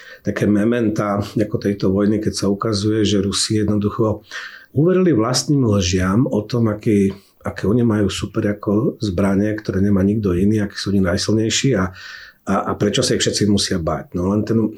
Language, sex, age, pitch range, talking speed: Slovak, male, 50-69, 100-115 Hz, 175 wpm